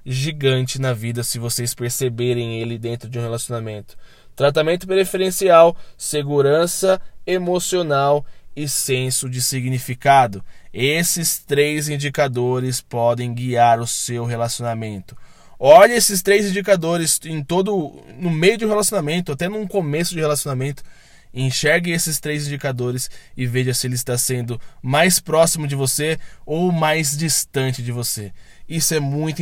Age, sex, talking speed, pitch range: 20-39, male, 135 wpm, 120-155 Hz